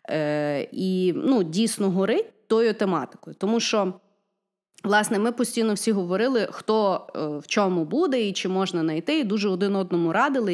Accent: native